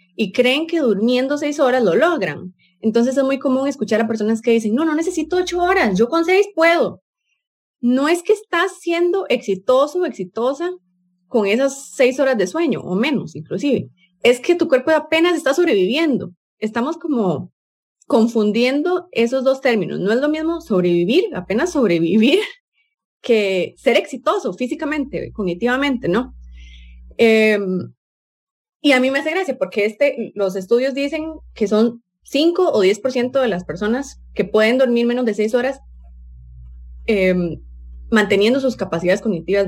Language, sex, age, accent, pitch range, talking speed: English, female, 30-49, Colombian, 190-285 Hz, 155 wpm